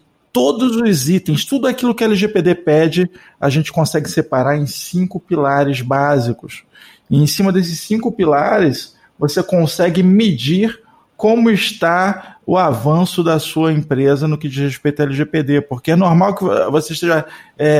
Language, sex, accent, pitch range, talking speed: Portuguese, male, Brazilian, 150-200 Hz, 155 wpm